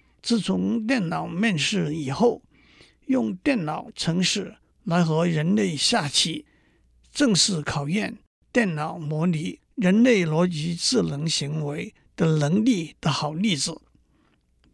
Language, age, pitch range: Chinese, 60-79, 155-210 Hz